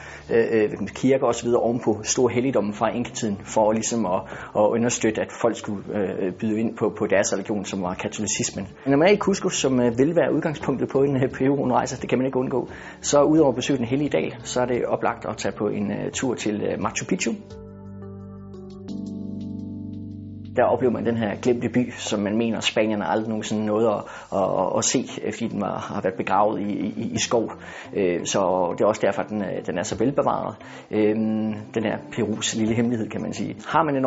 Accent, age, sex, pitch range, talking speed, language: native, 30-49, male, 105-125 Hz, 195 wpm, Danish